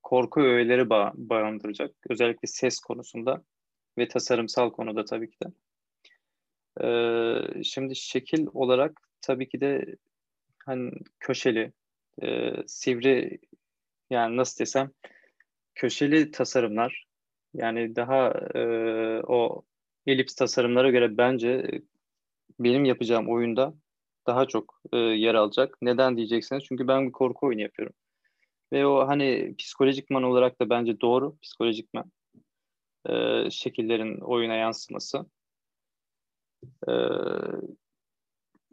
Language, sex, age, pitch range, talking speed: Turkish, male, 30-49, 115-135 Hz, 100 wpm